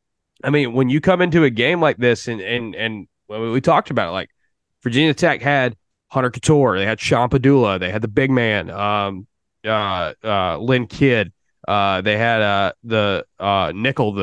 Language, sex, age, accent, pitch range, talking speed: English, male, 20-39, American, 110-140 Hz, 185 wpm